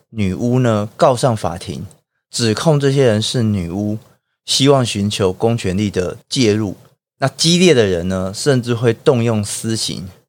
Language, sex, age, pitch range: Chinese, male, 30-49, 100-135 Hz